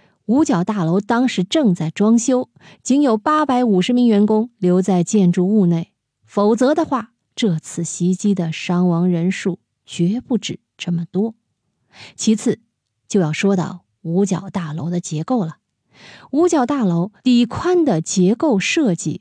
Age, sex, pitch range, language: 20-39, female, 170-220 Hz, Chinese